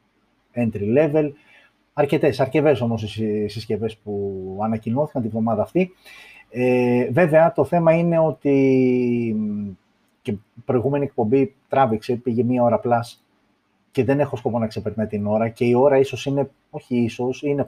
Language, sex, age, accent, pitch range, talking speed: Greek, male, 30-49, native, 115-135 Hz, 140 wpm